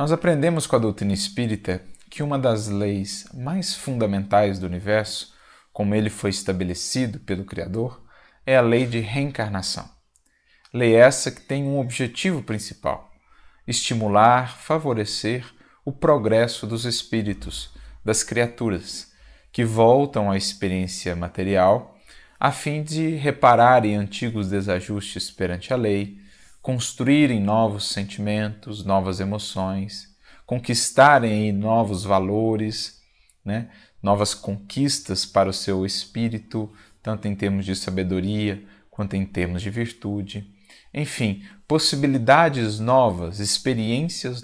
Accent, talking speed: Brazilian, 110 wpm